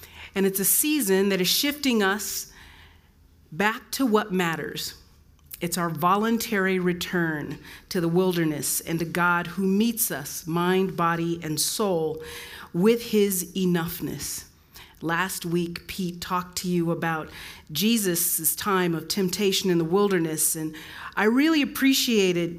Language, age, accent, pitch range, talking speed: English, 40-59, American, 155-195 Hz, 135 wpm